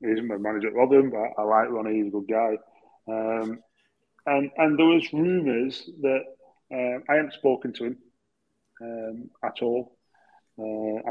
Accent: British